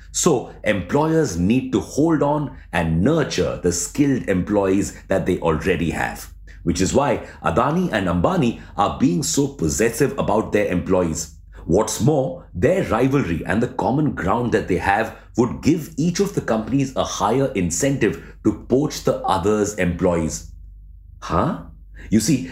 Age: 60-79